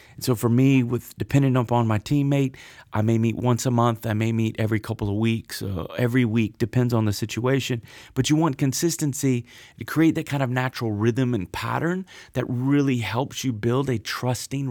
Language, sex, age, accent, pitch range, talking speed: English, male, 30-49, American, 105-130 Hz, 195 wpm